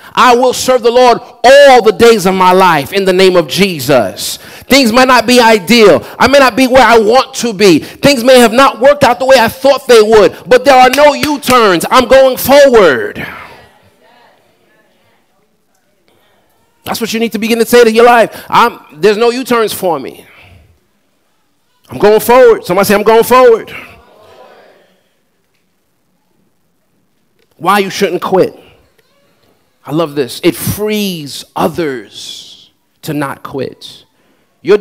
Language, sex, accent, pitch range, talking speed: English, male, American, 165-245 Hz, 150 wpm